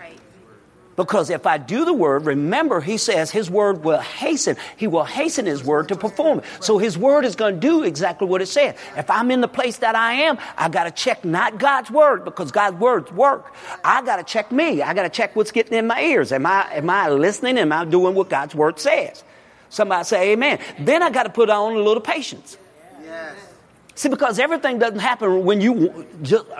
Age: 50-69